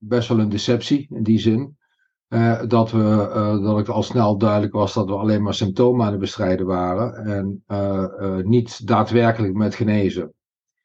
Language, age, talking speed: Dutch, 50-69, 175 wpm